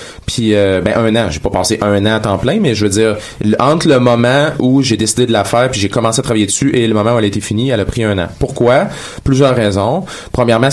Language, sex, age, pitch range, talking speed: French, male, 30-49, 100-120 Hz, 270 wpm